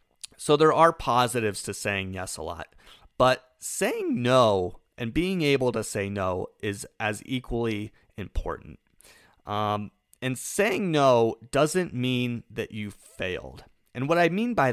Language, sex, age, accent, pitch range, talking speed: English, male, 30-49, American, 105-135 Hz, 145 wpm